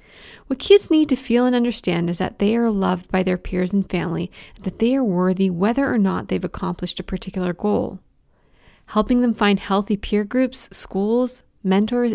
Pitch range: 185-235 Hz